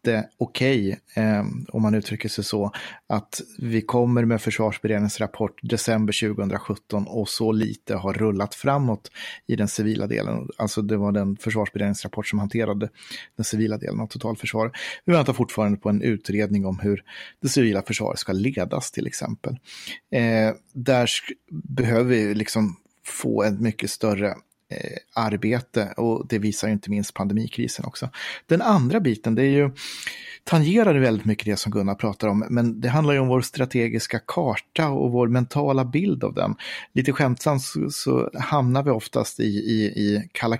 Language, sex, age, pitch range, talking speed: Swedish, male, 30-49, 105-125 Hz, 165 wpm